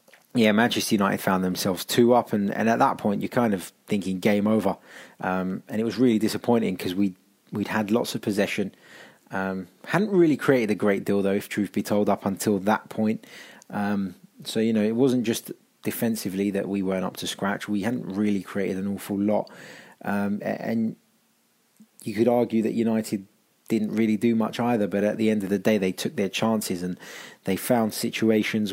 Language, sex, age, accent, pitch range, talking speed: English, male, 20-39, British, 95-115 Hz, 200 wpm